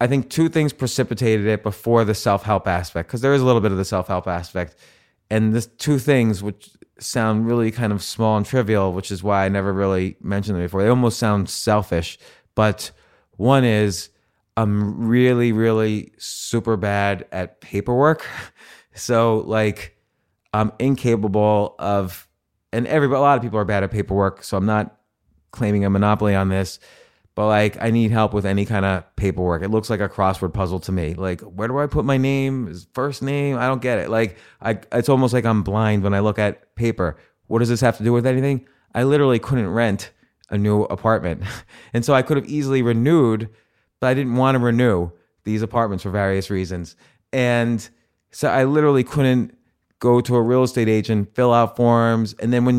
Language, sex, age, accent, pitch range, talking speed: English, male, 30-49, American, 100-125 Hz, 195 wpm